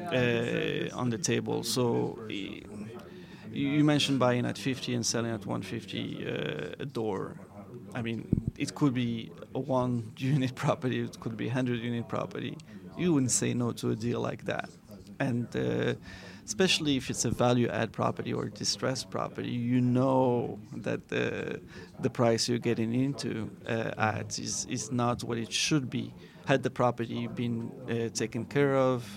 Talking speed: 165 wpm